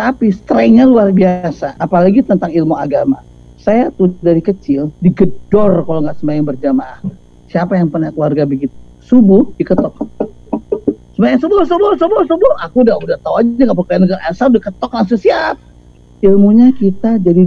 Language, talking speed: Indonesian, 150 wpm